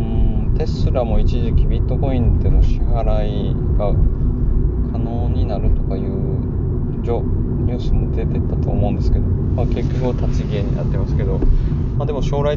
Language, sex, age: Japanese, male, 20-39